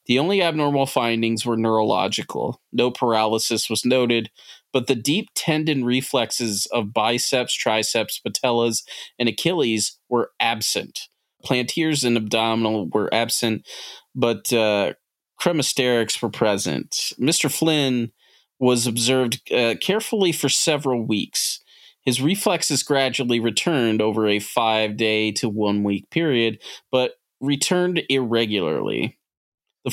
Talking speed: 110 wpm